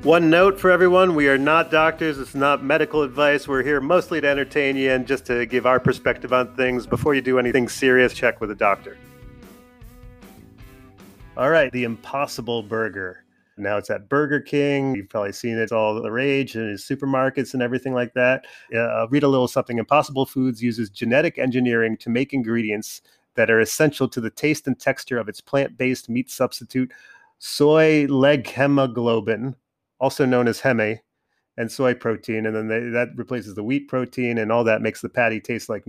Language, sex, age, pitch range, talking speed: English, male, 30-49, 120-145 Hz, 180 wpm